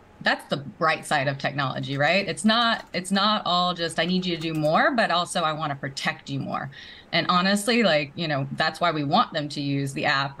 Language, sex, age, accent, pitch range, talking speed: English, female, 20-39, American, 150-195 Hz, 230 wpm